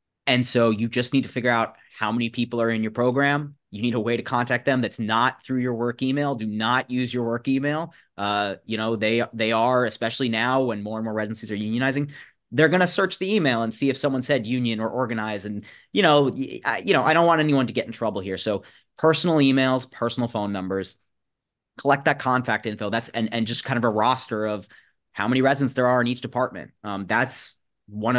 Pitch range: 105-125 Hz